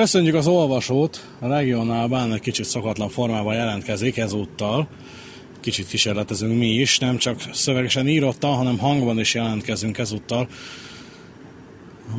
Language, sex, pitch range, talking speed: Hungarian, male, 110-130 Hz, 125 wpm